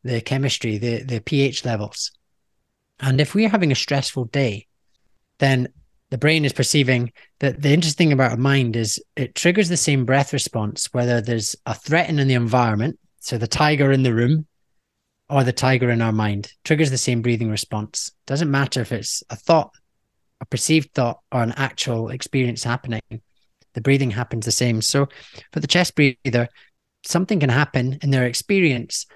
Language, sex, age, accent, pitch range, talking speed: English, male, 30-49, British, 115-140 Hz, 180 wpm